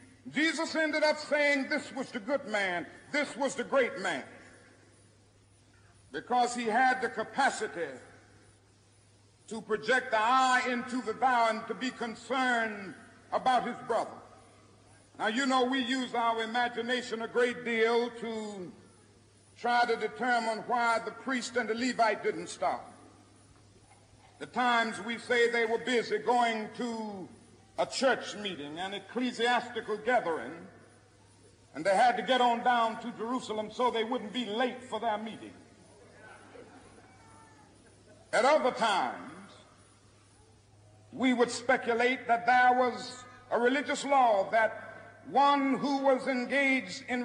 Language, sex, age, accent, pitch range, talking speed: English, male, 60-79, American, 195-255 Hz, 135 wpm